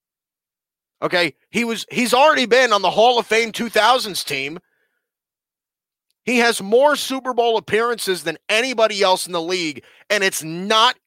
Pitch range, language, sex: 175-230 Hz, English, male